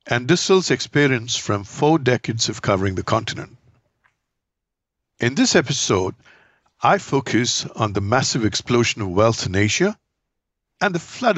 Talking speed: 135 wpm